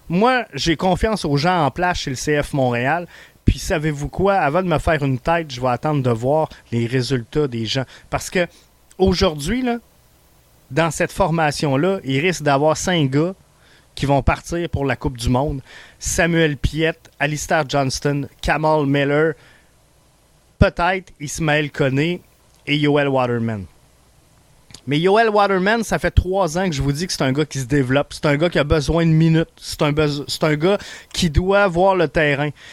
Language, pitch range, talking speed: French, 140-175 Hz, 180 wpm